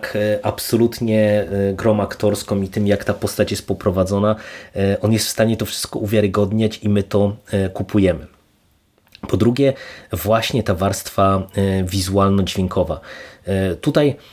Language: Polish